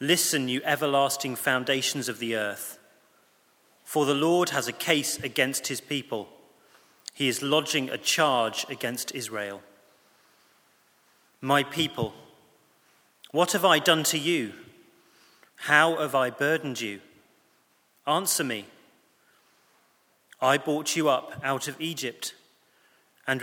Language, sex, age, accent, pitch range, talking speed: English, male, 30-49, British, 130-155 Hz, 120 wpm